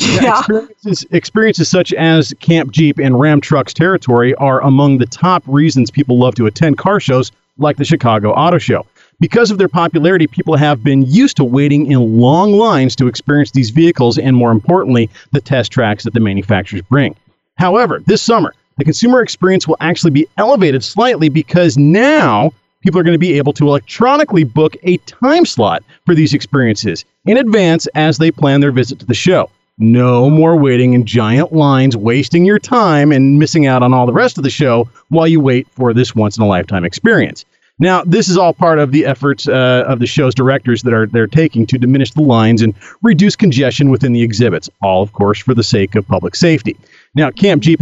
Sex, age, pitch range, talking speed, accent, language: male, 40-59, 125-165 Hz, 195 wpm, American, English